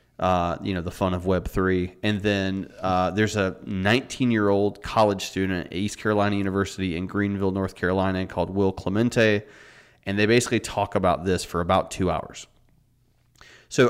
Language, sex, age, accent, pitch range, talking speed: English, male, 30-49, American, 90-110 Hz, 160 wpm